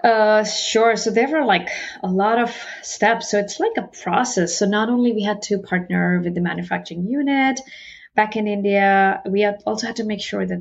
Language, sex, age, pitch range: English, female, 30-49, 180-225 Hz